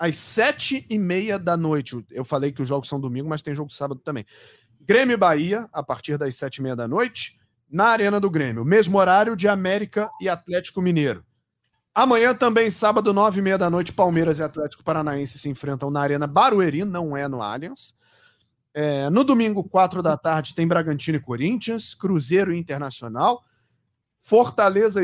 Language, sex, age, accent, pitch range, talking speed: Portuguese, male, 40-59, Brazilian, 140-200 Hz, 175 wpm